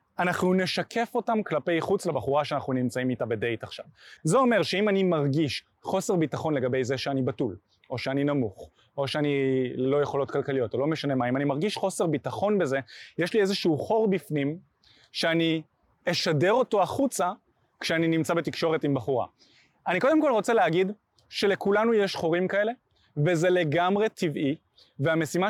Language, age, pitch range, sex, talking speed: Hebrew, 20-39, 145-200 Hz, male, 160 wpm